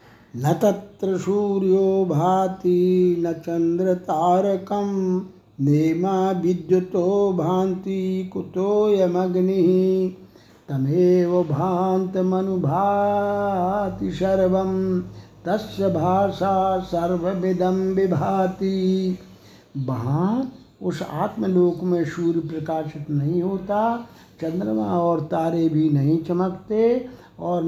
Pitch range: 155-190 Hz